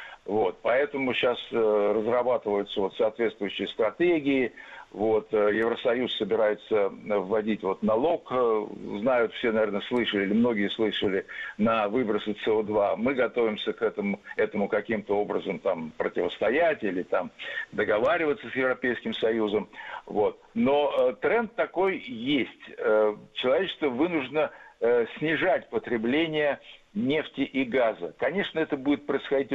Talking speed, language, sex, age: 120 wpm, Russian, male, 60-79